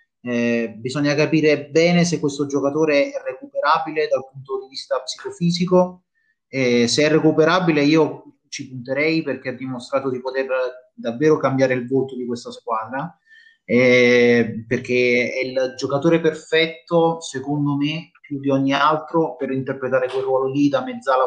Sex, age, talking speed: male, 30-49, 145 wpm